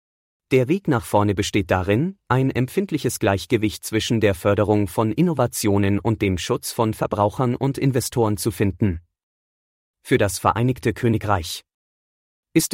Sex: male